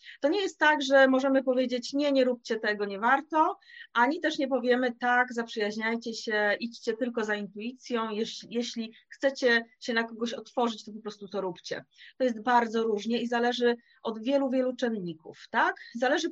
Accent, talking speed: native, 175 wpm